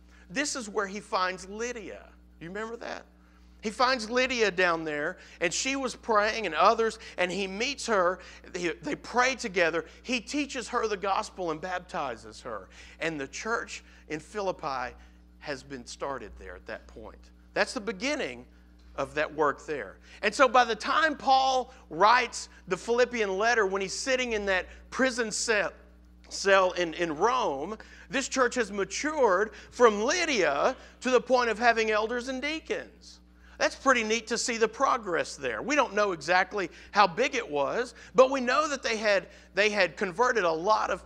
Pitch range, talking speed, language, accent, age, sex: 180-250 Hz, 170 wpm, English, American, 50-69, male